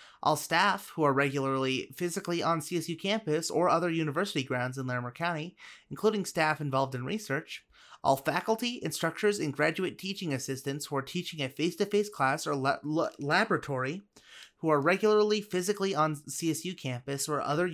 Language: English